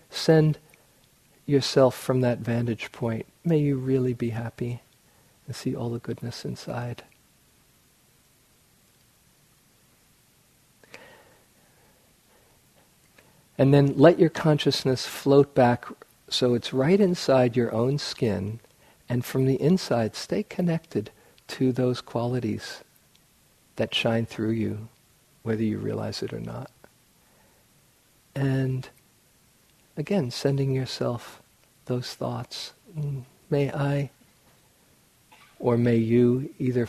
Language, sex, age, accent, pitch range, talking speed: English, male, 50-69, American, 120-140 Hz, 100 wpm